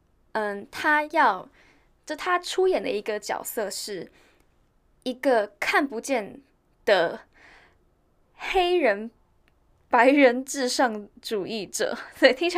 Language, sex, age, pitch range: Chinese, female, 10-29, 205-300 Hz